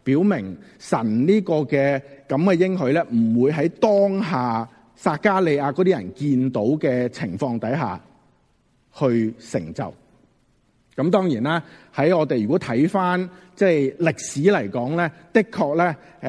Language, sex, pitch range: Chinese, male, 120-165 Hz